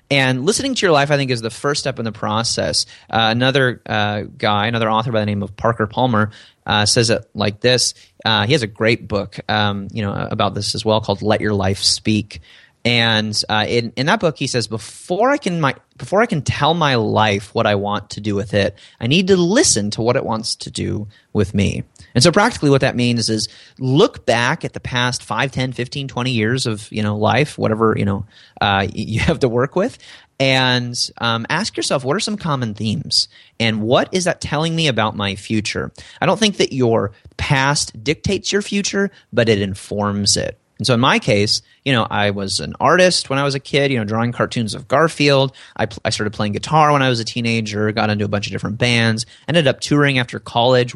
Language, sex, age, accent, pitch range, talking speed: English, male, 30-49, American, 105-130 Hz, 220 wpm